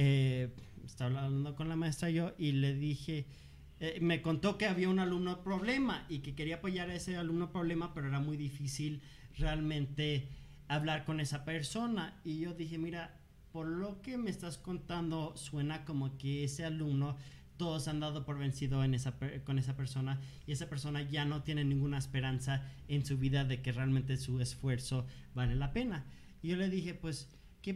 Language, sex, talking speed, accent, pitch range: Spanish, male, 190 wpm, Mexican, 140-185 Hz